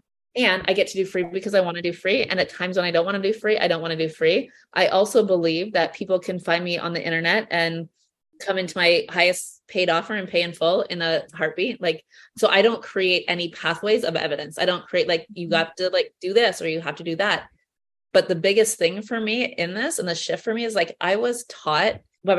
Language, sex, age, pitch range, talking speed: English, female, 20-39, 165-200 Hz, 260 wpm